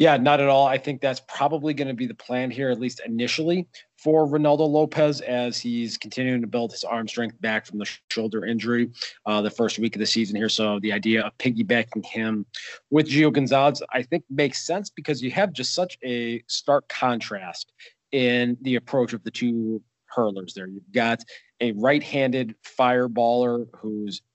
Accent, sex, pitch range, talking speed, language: American, male, 110-130 Hz, 190 wpm, English